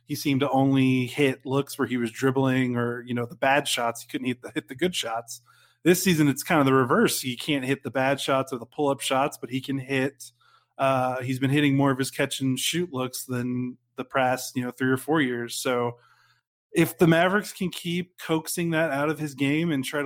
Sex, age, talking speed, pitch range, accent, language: male, 30-49, 225 wpm, 130-150 Hz, American, English